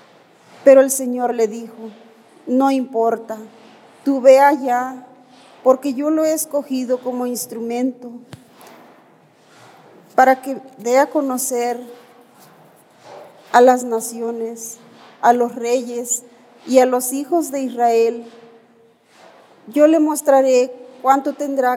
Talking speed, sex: 110 wpm, female